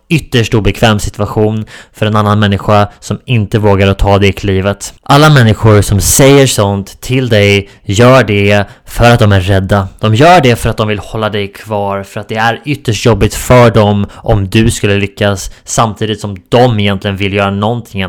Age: 20-39